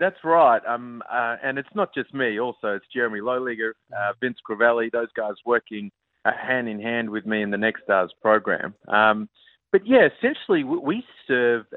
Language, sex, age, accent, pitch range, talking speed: English, male, 30-49, Australian, 115-135 Hz, 185 wpm